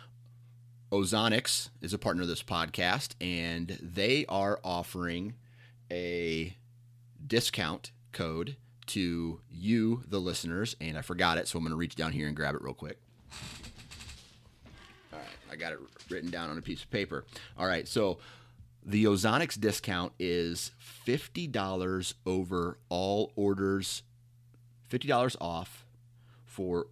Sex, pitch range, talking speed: male, 85-120 Hz, 135 wpm